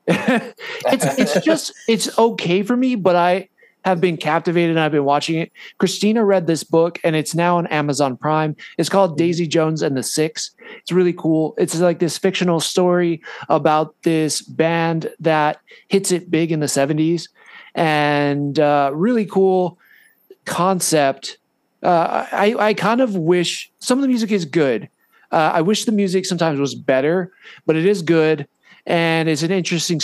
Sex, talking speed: male, 170 wpm